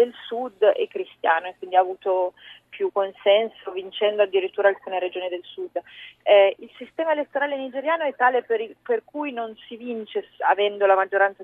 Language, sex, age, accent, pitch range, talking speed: Italian, female, 30-49, native, 190-235 Hz, 175 wpm